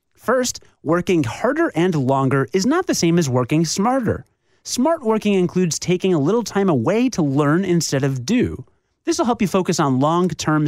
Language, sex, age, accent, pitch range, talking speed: English, male, 30-49, American, 135-205 Hz, 180 wpm